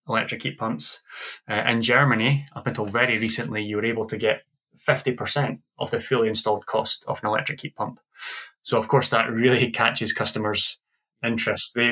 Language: English